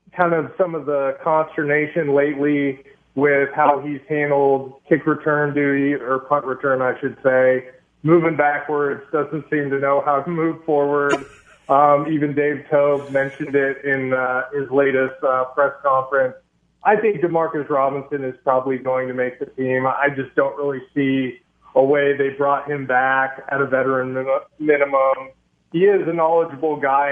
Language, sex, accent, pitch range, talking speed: English, male, American, 135-165 Hz, 165 wpm